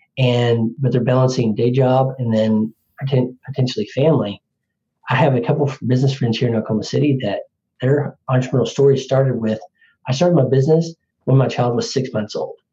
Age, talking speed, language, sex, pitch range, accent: 40-59, 185 wpm, English, male, 120-145 Hz, American